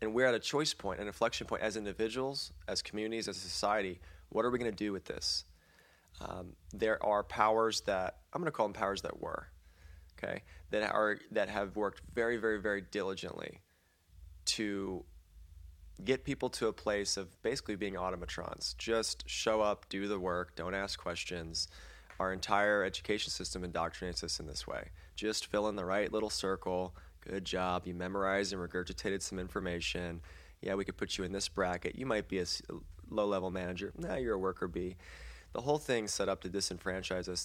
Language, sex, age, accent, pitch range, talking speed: English, male, 20-39, American, 85-105 Hz, 185 wpm